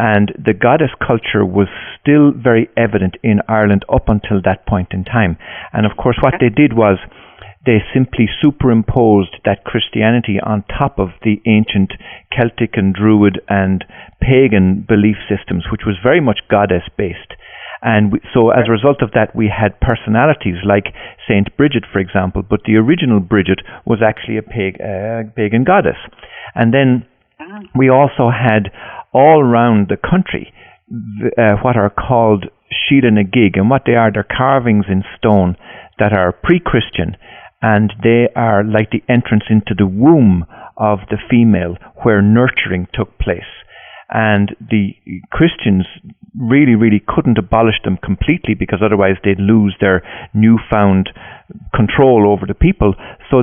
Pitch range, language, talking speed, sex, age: 100-120 Hz, English, 150 wpm, male, 50-69